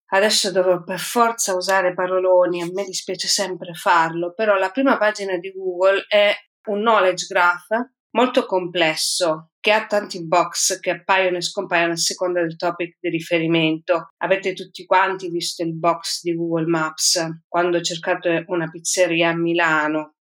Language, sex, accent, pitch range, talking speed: Italian, female, native, 170-200 Hz, 155 wpm